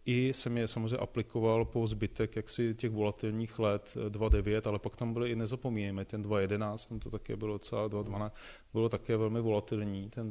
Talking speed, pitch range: 175 wpm, 95-115 Hz